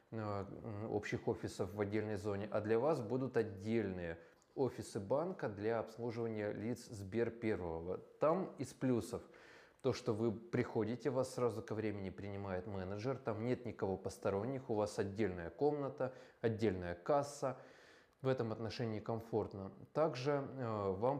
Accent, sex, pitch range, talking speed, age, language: native, male, 100-125 Hz, 130 wpm, 20-39, Russian